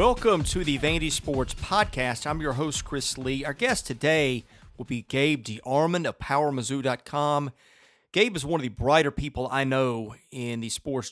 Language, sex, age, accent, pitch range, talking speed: English, male, 40-59, American, 120-155 Hz, 175 wpm